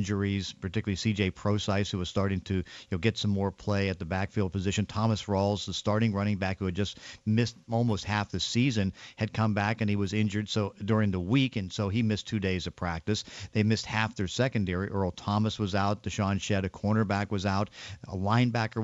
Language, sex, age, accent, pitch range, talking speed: English, male, 50-69, American, 100-120 Hz, 215 wpm